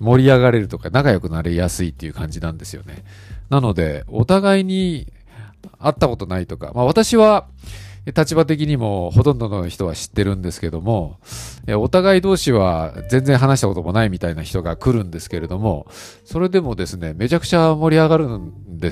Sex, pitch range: male, 85-125 Hz